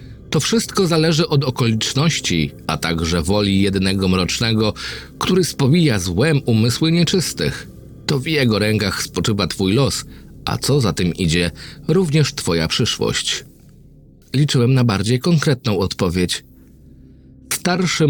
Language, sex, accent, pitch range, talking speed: Polish, male, native, 100-150 Hz, 120 wpm